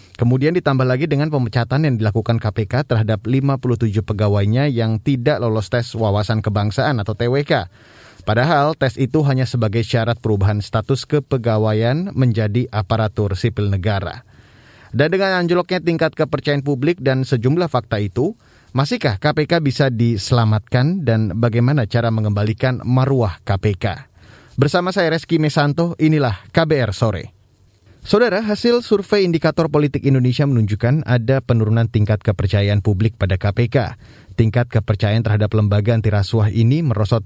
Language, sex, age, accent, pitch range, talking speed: Indonesian, male, 30-49, native, 110-140 Hz, 130 wpm